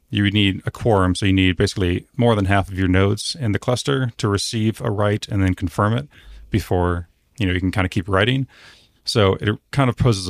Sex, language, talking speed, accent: male, English, 235 wpm, American